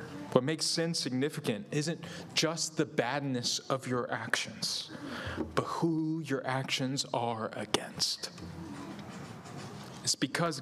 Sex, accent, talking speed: male, American, 105 wpm